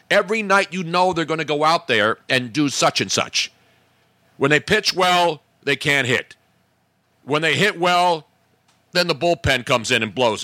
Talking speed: 190 wpm